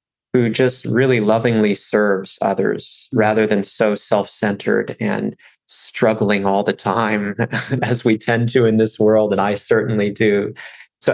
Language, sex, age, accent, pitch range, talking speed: English, male, 30-49, American, 105-120 Hz, 145 wpm